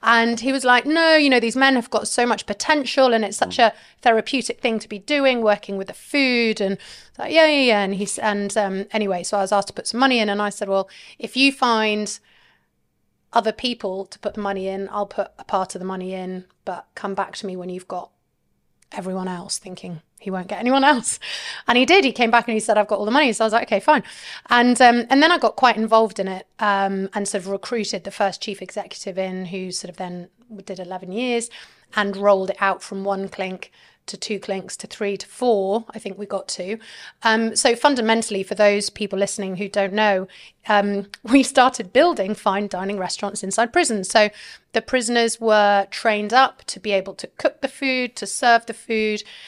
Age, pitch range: 30-49, 195-235 Hz